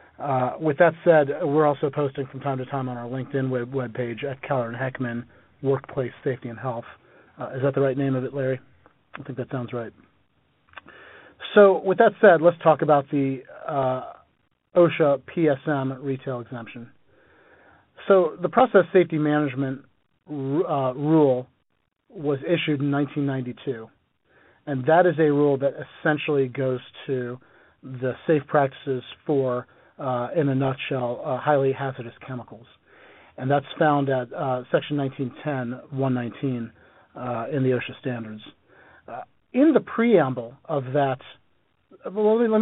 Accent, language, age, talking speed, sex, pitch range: American, English, 40-59, 145 wpm, male, 130-155 Hz